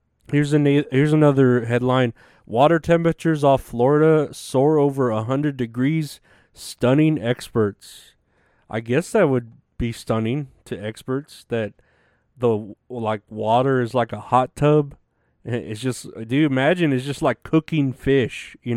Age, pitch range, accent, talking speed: 30-49, 110-140 Hz, American, 145 wpm